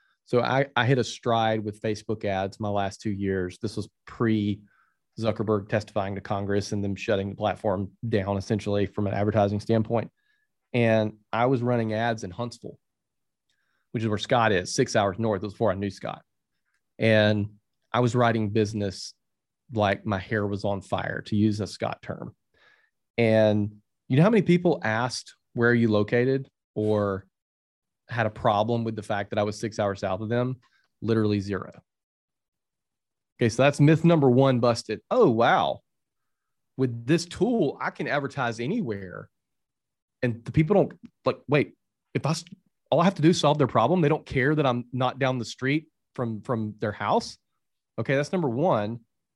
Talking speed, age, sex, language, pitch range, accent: 175 wpm, 30-49, male, English, 105-125 Hz, American